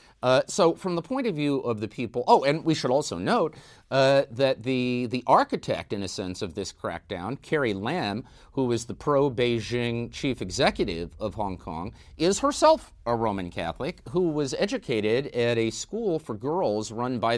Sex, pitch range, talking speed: male, 115-165 Hz, 185 wpm